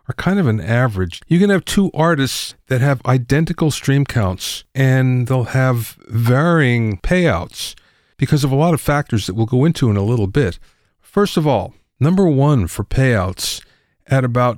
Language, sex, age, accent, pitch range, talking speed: English, male, 50-69, American, 105-145 Hz, 175 wpm